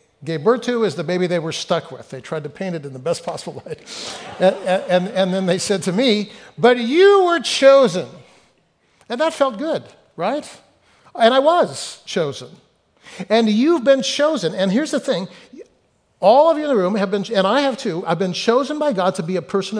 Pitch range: 175-250 Hz